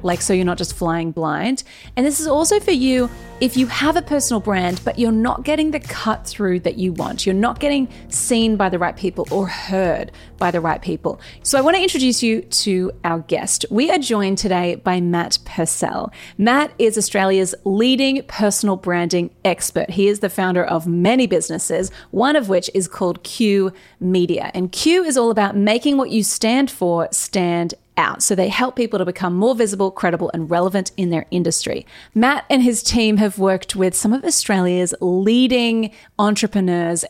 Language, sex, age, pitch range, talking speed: English, female, 30-49, 180-235 Hz, 190 wpm